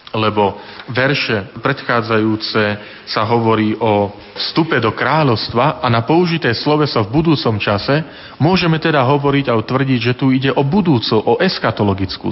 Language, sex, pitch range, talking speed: Slovak, male, 110-140 Hz, 140 wpm